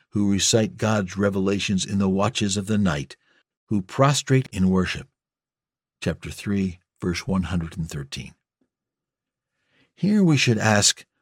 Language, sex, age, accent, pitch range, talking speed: English, male, 60-79, American, 95-130 Hz, 120 wpm